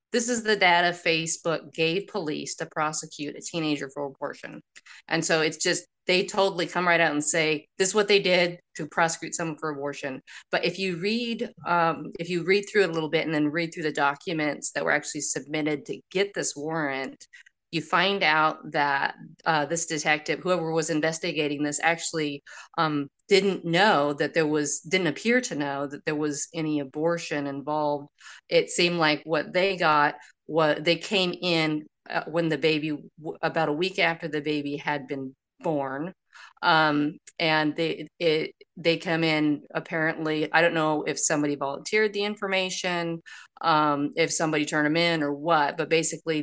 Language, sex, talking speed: English, female, 175 wpm